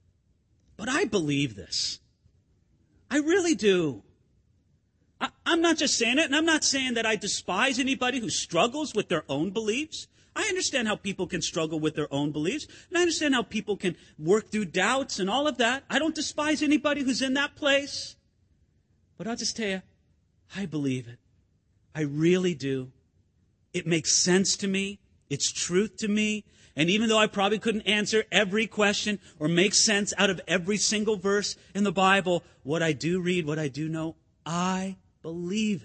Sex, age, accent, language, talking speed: male, 40-59, American, English, 180 wpm